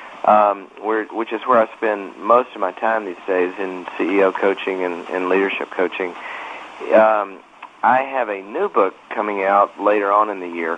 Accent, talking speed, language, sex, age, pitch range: American, 185 wpm, English, male, 50-69, 95-115 Hz